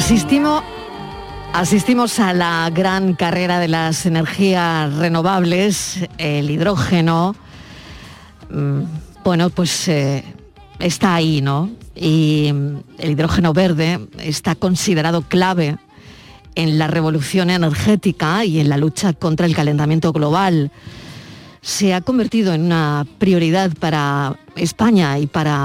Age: 40-59